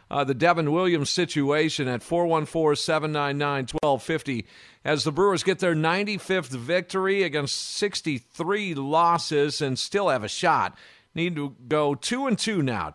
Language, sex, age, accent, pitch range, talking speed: English, male, 50-69, American, 140-175 Hz, 135 wpm